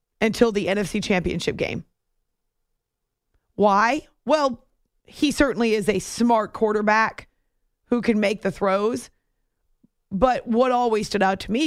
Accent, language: American, English